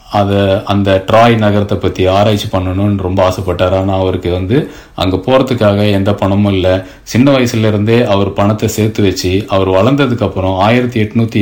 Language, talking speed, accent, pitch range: Tamil, 140 wpm, native, 95-115 Hz